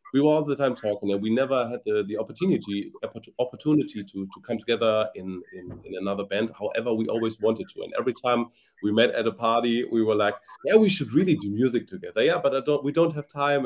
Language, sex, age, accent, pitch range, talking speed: English, male, 30-49, German, 100-135 Hz, 235 wpm